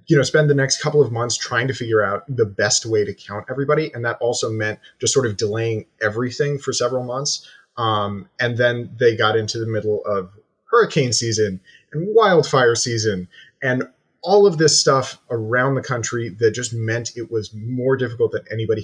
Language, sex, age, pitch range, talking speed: English, male, 30-49, 110-135 Hz, 195 wpm